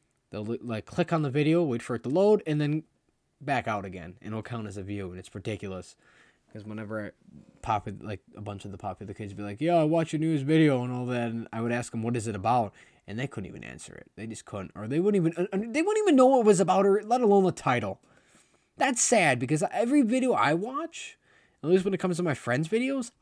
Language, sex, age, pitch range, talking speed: English, male, 20-39, 110-160 Hz, 260 wpm